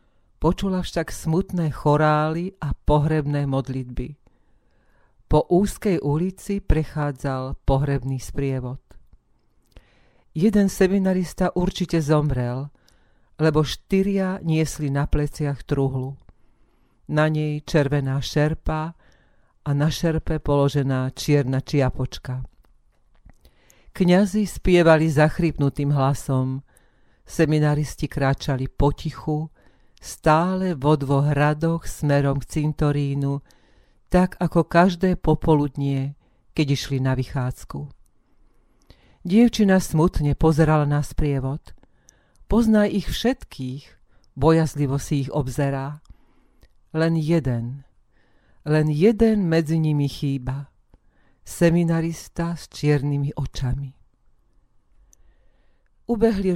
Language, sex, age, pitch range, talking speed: Slovak, female, 40-59, 135-165 Hz, 85 wpm